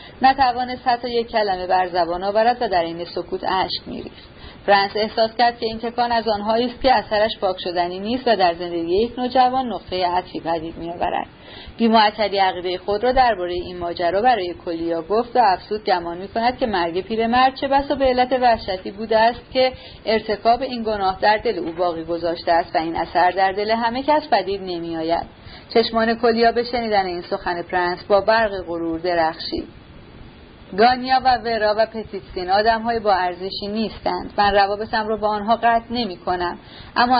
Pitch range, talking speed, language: 185-240 Hz, 175 wpm, Persian